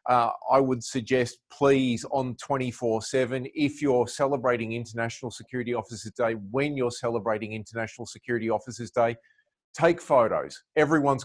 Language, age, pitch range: English, 30-49, 115-130 Hz